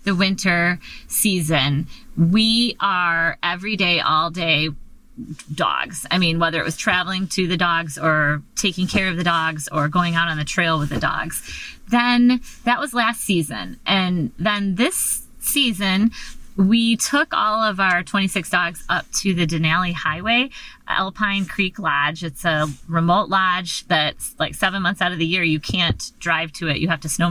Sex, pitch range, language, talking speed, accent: female, 160-200 Hz, English, 175 wpm, American